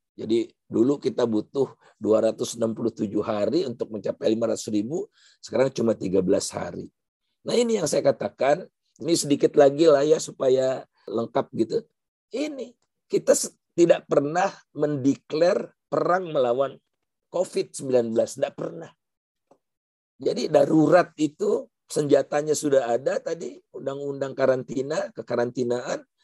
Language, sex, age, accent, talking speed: Indonesian, male, 50-69, native, 105 wpm